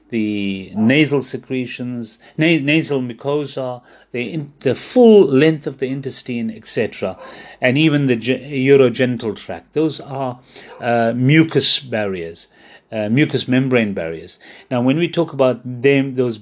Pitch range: 120-145 Hz